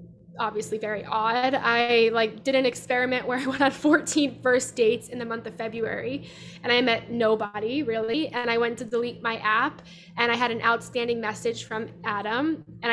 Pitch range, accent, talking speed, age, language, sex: 225-260 Hz, American, 190 wpm, 10-29, English, female